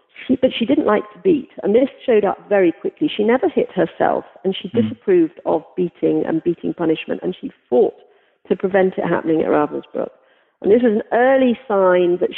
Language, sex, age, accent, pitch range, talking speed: English, female, 40-59, British, 185-245 Hz, 200 wpm